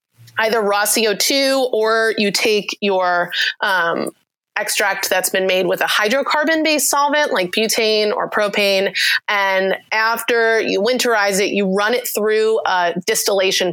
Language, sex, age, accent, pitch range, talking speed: English, female, 20-39, American, 185-235 Hz, 135 wpm